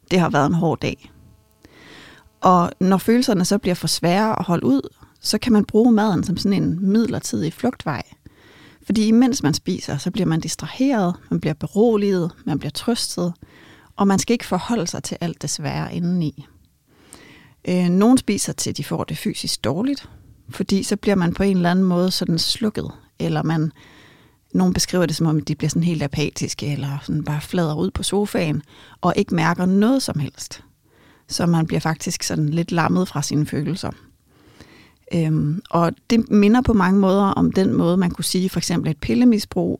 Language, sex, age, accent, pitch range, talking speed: Danish, female, 30-49, native, 155-200 Hz, 185 wpm